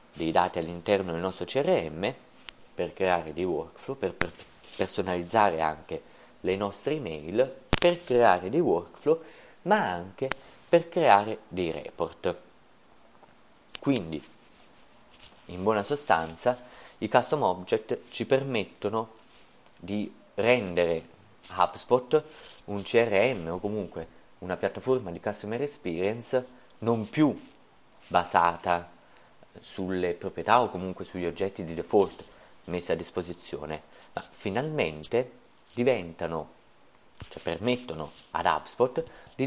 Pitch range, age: 85-125 Hz, 30-49